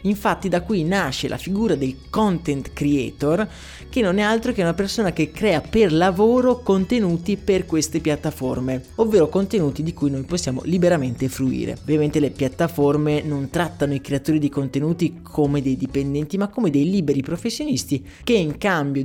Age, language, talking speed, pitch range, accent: 20-39, Italian, 165 wpm, 140-185 Hz, native